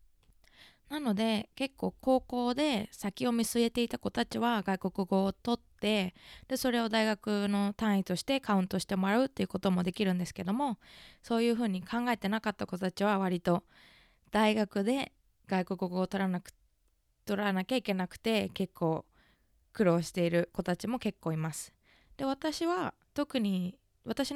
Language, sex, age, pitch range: Japanese, female, 20-39, 190-255 Hz